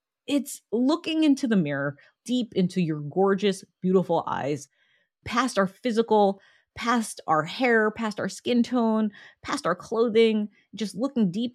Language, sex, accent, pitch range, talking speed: English, female, American, 165-245 Hz, 140 wpm